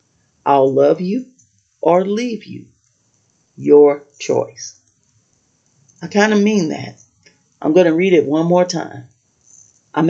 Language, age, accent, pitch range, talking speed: English, 40-59, American, 135-180 Hz, 130 wpm